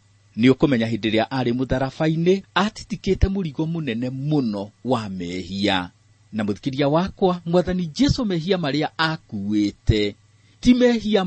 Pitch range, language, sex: 105-160 Hz, English, male